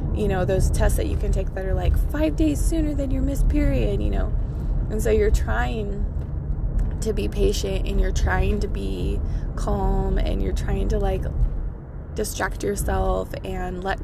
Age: 20-39